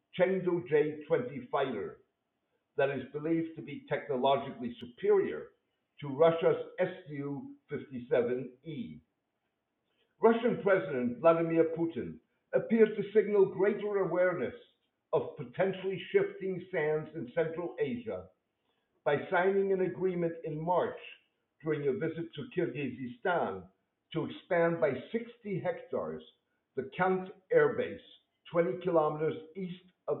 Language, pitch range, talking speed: English, 155-210 Hz, 105 wpm